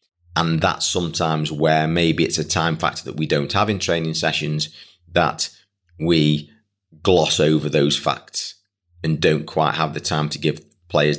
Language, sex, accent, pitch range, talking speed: English, male, British, 80-95 Hz, 165 wpm